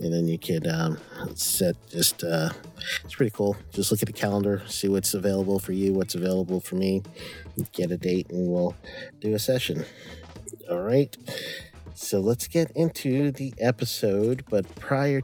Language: English